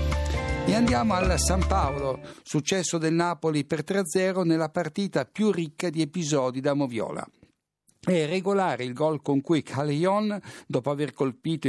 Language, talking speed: Italian, 145 wpm